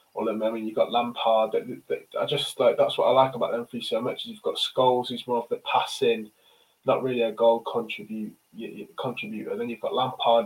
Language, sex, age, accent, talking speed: English, male, 20-39, British, 260 wpm